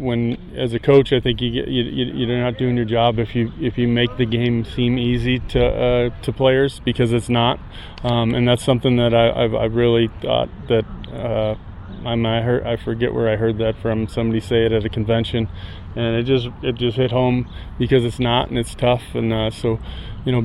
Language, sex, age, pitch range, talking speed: English, male, 20-39, 110-120 Hz, 225 wpm